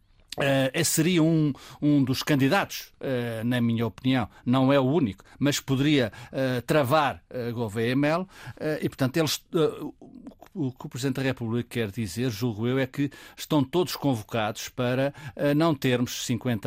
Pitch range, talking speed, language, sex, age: 120-145 Hz, 175 wpm, Portuguese, male, 50-69